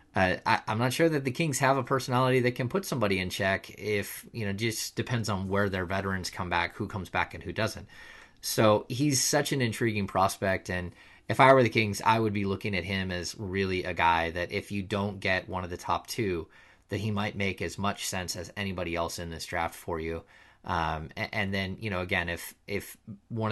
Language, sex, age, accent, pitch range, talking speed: English, male, 30-49, American, 90-110 Hz, 225 wpm